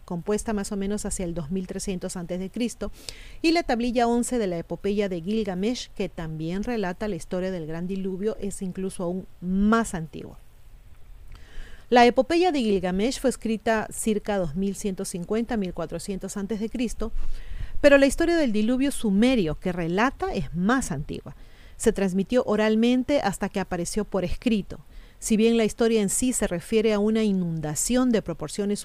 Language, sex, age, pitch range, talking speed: Spanish, female, 40-59, 185-235 Hz, 150 wpm